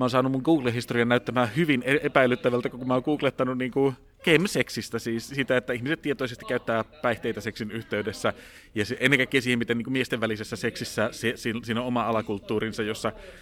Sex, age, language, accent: male, 30-49, Finnish, native